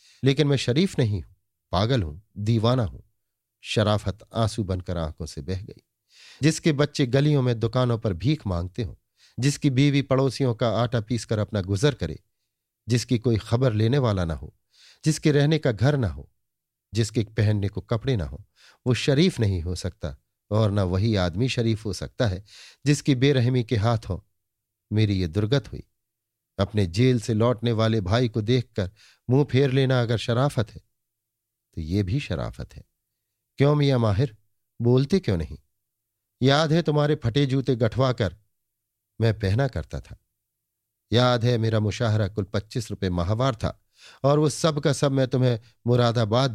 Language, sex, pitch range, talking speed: Hindi, male, 105-130 Hz, 165 wpm